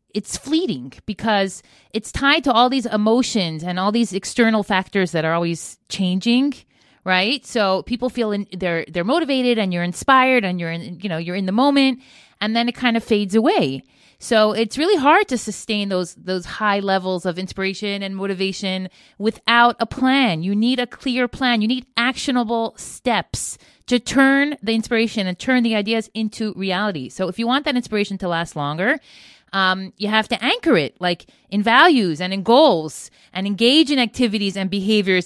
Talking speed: 185 wpm